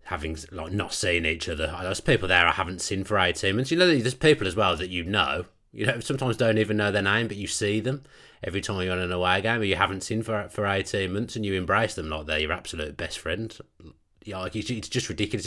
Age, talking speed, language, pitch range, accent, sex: 30-49, 265 wpm, English, 90-115 Hz, British, male